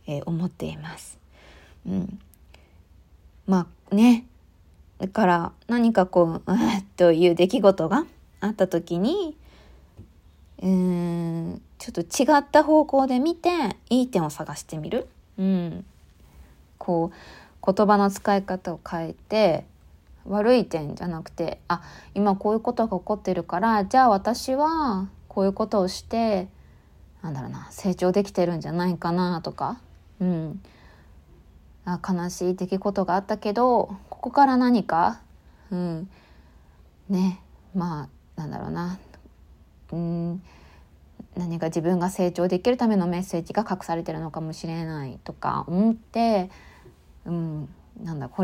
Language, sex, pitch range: Japanese, female, 160-205 Hz